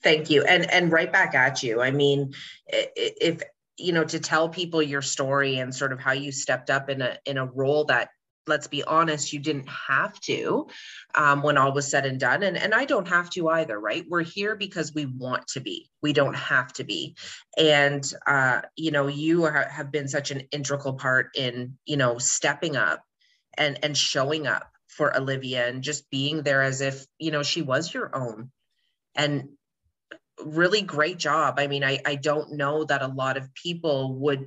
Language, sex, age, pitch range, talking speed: English, female, 30-49, 135-155 Hz, 200 wpm